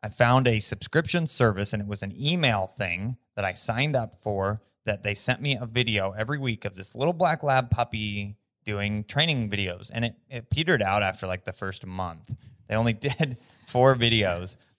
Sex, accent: male, American